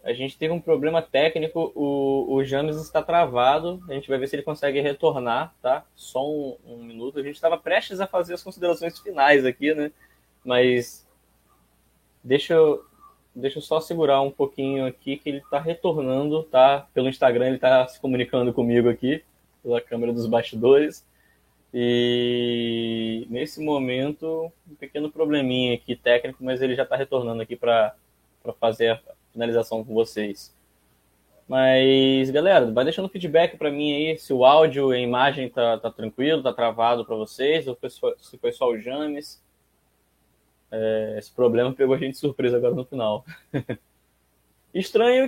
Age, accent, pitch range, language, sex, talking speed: 10-29, Brazilian, 120-155 Hz, Portuguese, male, 155 wpm